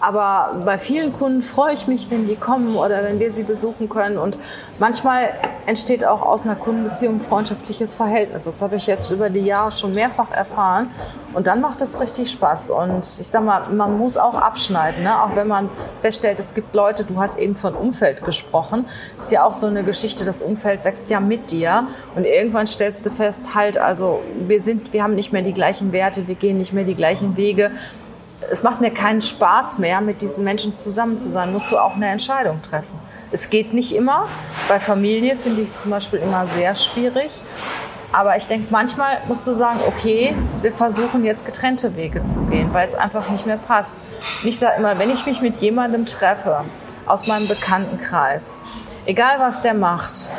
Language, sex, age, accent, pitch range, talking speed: German, female, 30-49, German, 200-235 Hz, 200 wpm